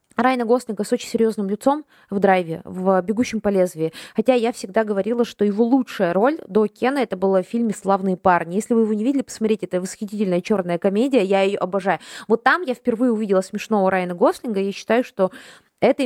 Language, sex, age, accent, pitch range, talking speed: Russian, female, 20-39, native, 190-235 Hz, 200 wpm